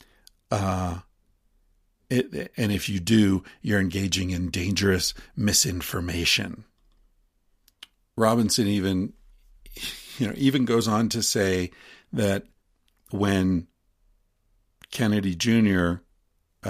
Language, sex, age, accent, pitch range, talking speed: English, male, 50-69, American, 85-105 Hz, 85 wpm